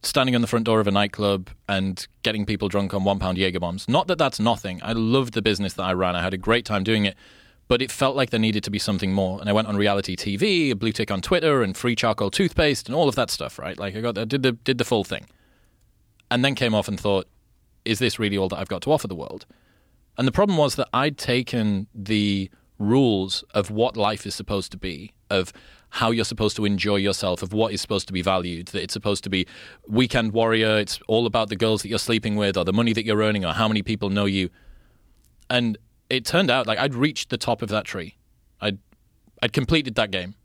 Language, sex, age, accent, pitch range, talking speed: English, male, 30-49, British, 100-115 Hz, 250 wpm